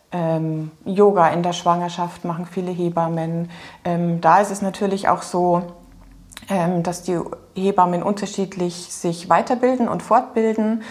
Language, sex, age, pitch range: German, female, 30-49, 170-200 Hz